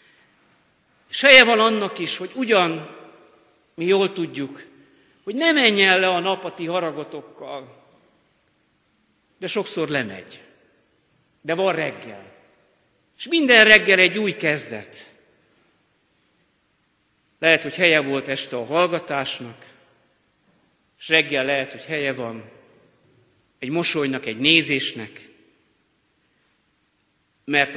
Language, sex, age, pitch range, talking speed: Hungarian, male, 50-69, 130-175 Hz, 100 wpm